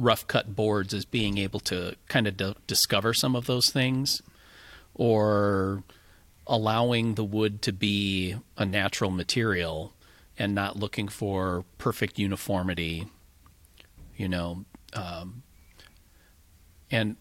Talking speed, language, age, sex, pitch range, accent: 115 wpm, English, 40-59, male, 90-110 Hz, American